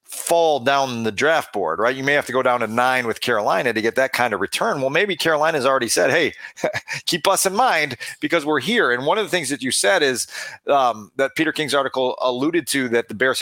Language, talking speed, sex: English, 240 wpm, male